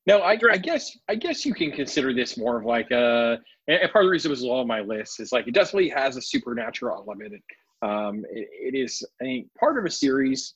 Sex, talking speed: male, 225 wpm